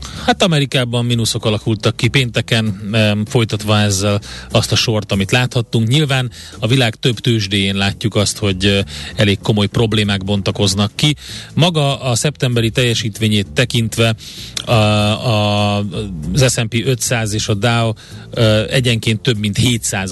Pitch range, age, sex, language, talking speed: 105-125 Hz, 30-49, male, Hungarian, 120 wpm